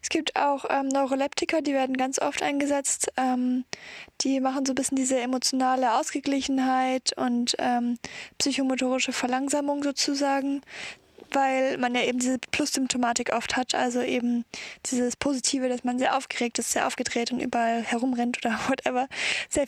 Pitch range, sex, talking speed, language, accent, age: 250-280 Hz, female, 150 wpm, German, German, 20-39